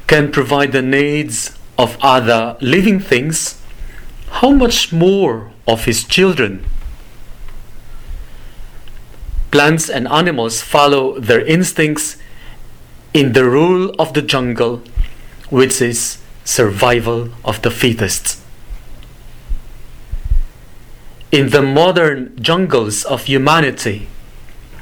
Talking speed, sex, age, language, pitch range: 90 wpm, male, 40-59, English, 115-150 Hz